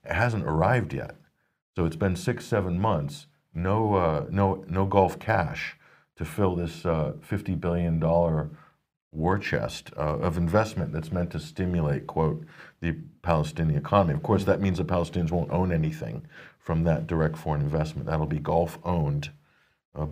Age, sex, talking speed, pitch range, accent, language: 40-59, male, 160 wpm, 80-100 Hz, American, English